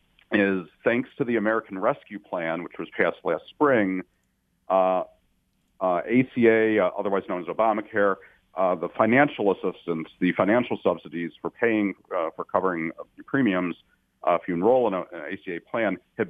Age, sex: 40-59, male